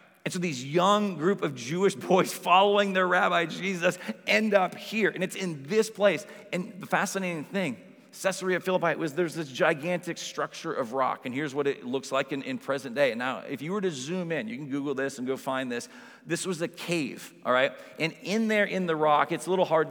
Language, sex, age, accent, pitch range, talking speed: English, male, 40-59, American, 150-185 Hz, 225 wpm